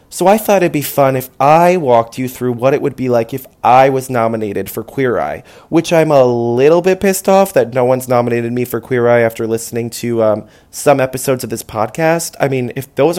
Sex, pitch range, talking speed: male, 120-150 Hz, 230 wpm